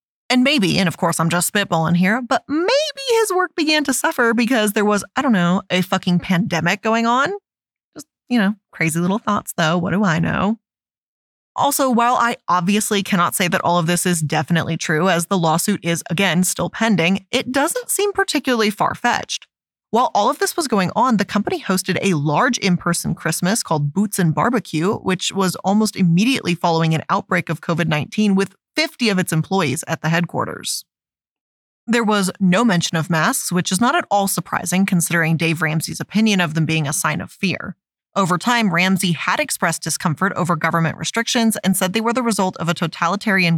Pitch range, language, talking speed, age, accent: 175-225 Hz, English, 190 wpm, 20-39, American